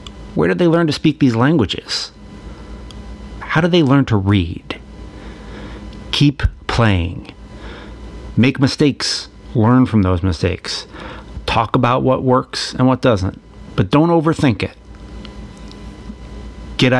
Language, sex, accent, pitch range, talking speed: English, male, American, 100-145 Hz, 120 wpm